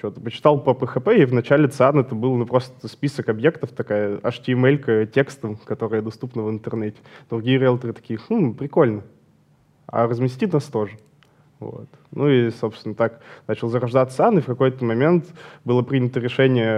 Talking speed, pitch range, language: 160 wpm, 115-140 Hz, Russian